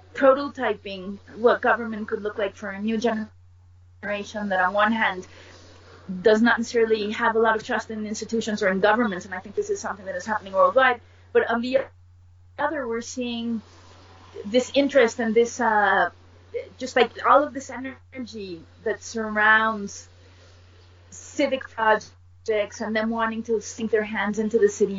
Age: 30-49